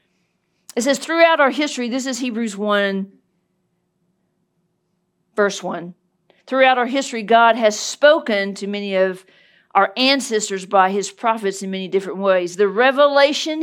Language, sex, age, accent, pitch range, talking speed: English, female, 50-69, American, 195-270 Hz, 135 wpm